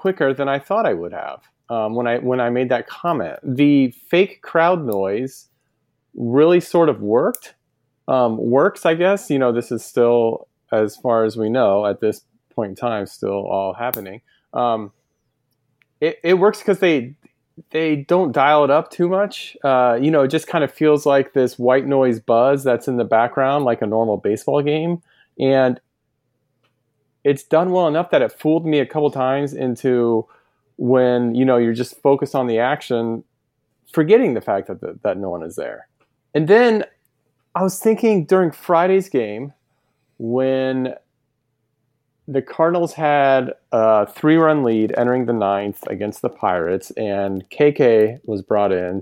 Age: 30-49